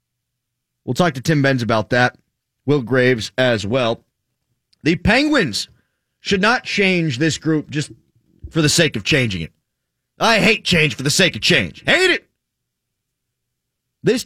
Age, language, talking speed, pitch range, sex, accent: 30-49, English, 150 wpm, 125-190 Hz, male, American